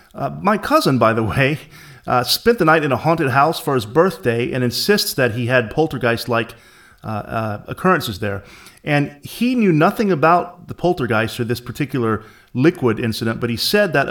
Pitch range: 120-150 Hz